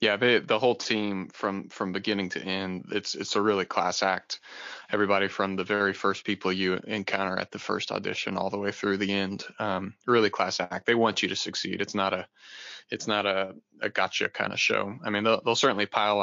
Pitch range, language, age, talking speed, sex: 100-120 Hz, English, 20-39, 220 wpm, male